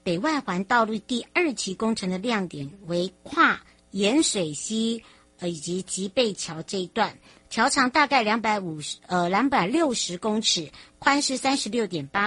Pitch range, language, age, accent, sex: 185-250 Hz, Chinese, 50-69, American, male